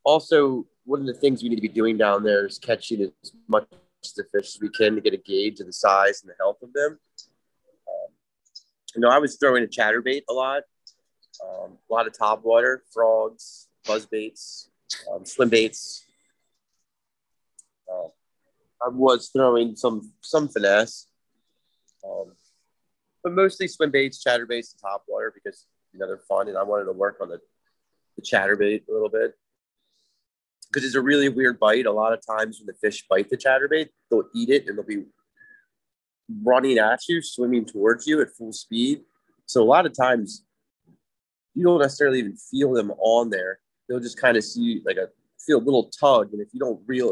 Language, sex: English, male